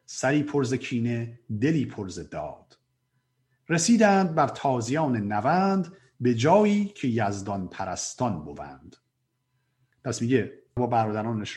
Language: Persian